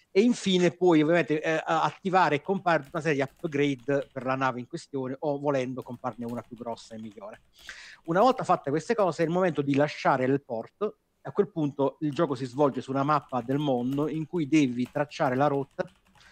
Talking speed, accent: 200 wpm, native